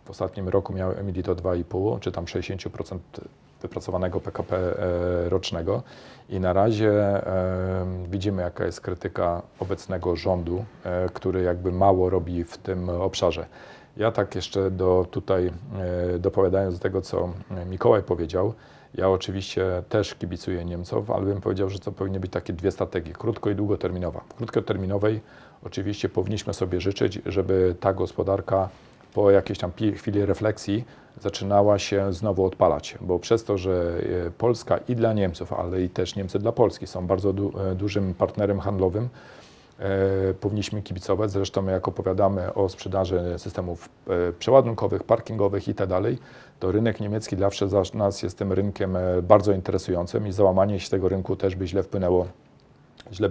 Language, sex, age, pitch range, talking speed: Polish, male, 40-59, 90-100 Hz, 150 wpm